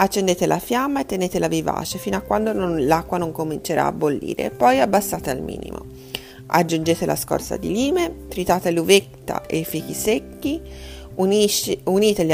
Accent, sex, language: native, female, Italian